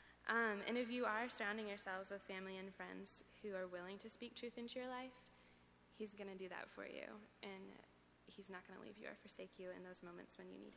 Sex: female